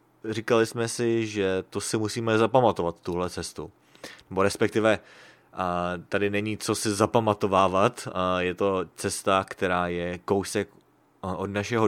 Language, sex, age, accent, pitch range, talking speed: English, male, 20-39, Czech, 95-115 Hz, 125 wpm